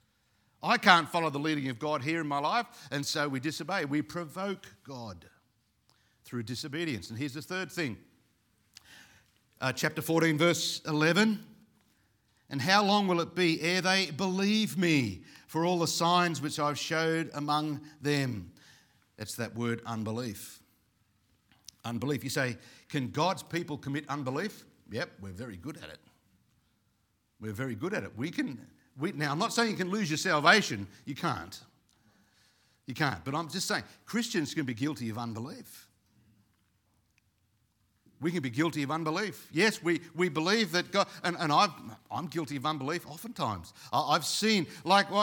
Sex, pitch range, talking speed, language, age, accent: male, 120-190 Hz, 160 wpm, English, 50-69, Australian